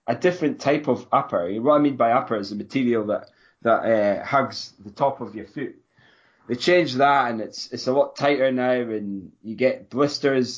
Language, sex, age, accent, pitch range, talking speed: English, male, 20-39, British, 110-130 Hz, 205 wpm